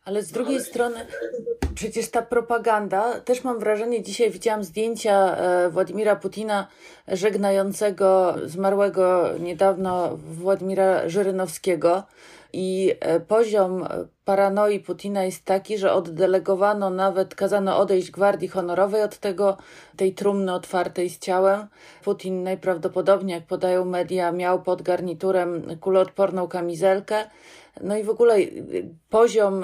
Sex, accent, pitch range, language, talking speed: female, native, 185-210 Hz, Polish, 110 wpm